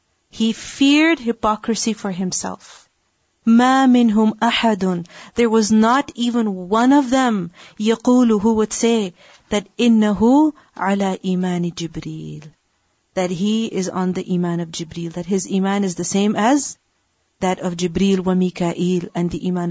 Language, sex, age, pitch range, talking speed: English, female, 40-59, 190-255 Hz, 145 wpm